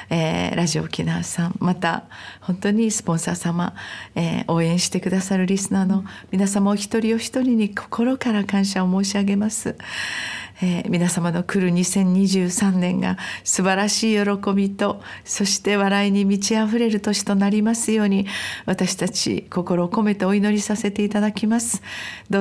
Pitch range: 185-210 Hz